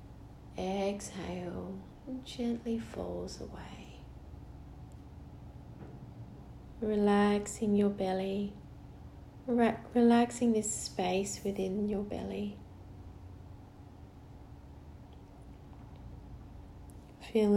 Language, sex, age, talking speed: English, female, 30-49, 50 wpm